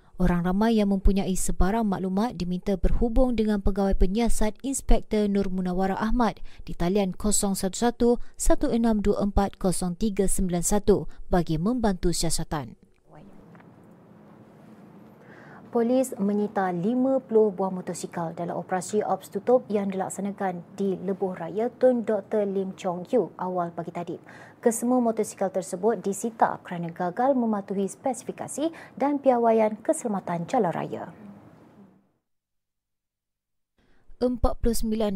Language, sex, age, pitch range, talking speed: Malay, female, 30-49, 185-225 Hz, 100 wpm